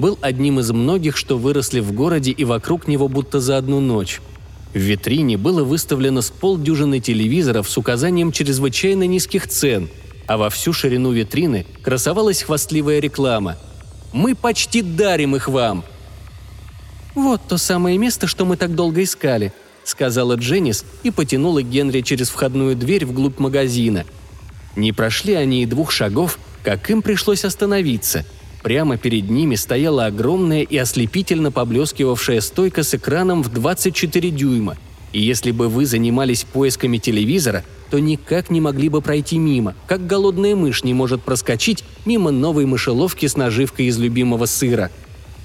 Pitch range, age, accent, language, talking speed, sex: 110-175 Hz, 30-49, native, Russian, 145 wpm, male